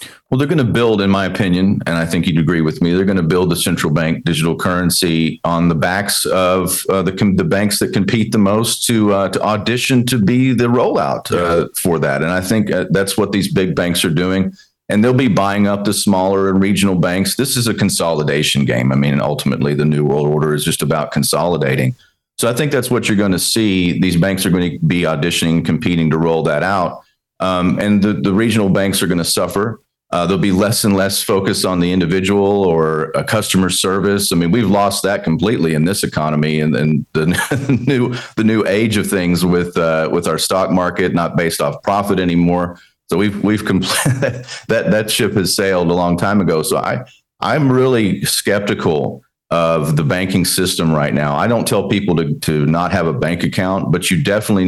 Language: English